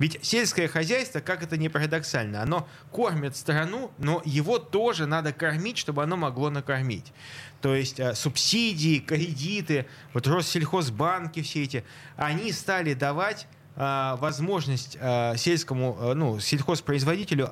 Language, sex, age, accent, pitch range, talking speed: Russian, male, 20-39, native, 135-180 Hz, 115 wpm